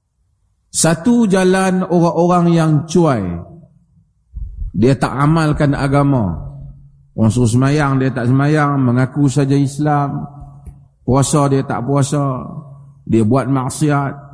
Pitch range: 125-165 Hz